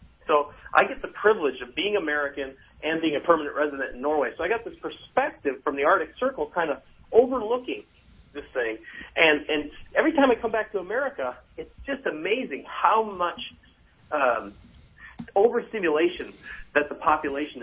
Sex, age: male, 40-59